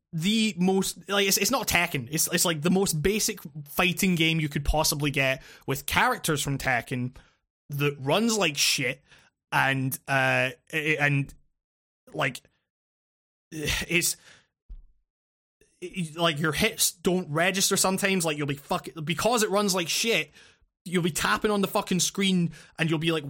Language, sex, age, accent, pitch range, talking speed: English, male, 20-39, British, 145-180 Hz, 155 wpm